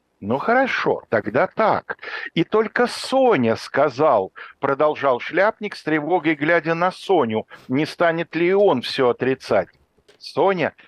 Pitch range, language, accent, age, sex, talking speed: 120-205 Hz, Russian, native, 60-79, male, 120 wpm